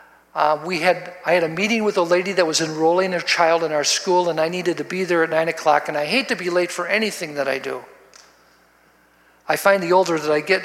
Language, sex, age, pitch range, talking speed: English, male, 50-69, 170-235 Hz, 255 wpm